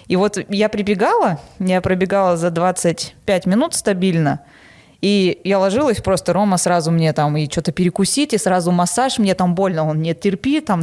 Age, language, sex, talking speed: 20-39, Russian, female, 170 wpm